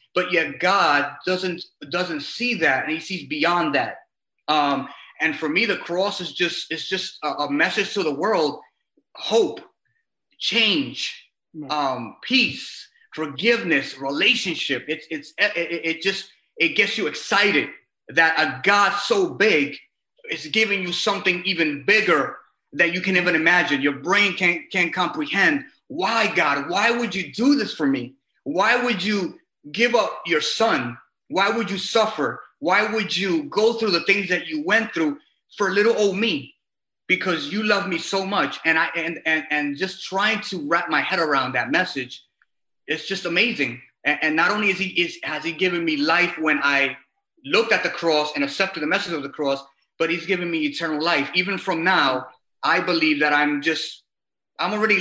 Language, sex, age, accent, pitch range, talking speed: English, male, 30-49, American, 155-205 Hz, 180 wpm